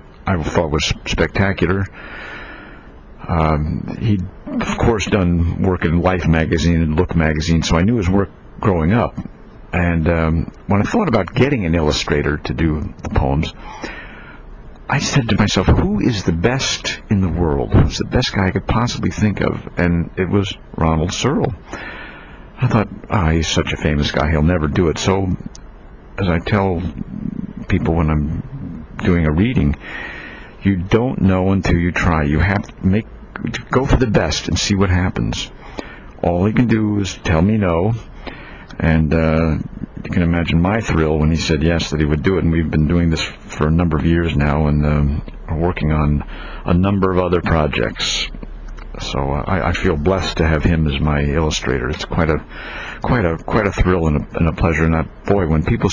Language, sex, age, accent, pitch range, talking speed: English, male, 60-79, American, 80-95 Hz, 190 wpm